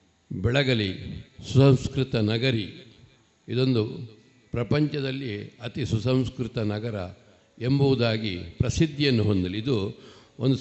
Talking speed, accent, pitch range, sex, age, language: 75 wpm, native, 105-130 Hz, male, 60-79, Kannada